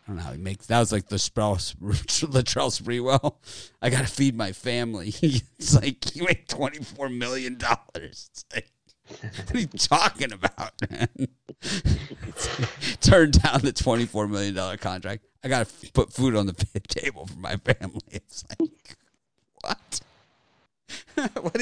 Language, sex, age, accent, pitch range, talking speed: English, male, 50-69, American, 95-120 Hz, 155 wpm